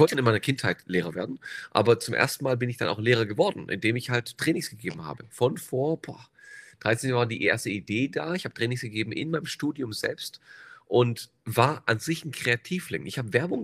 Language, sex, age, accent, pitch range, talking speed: German, male, 40-59, German, 115-145 Hz, 220 wpm